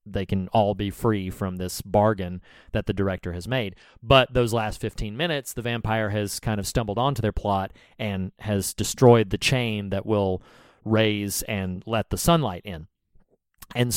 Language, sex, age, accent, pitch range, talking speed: English, male, 30-49, American, 100-130 Hz, 175 wpm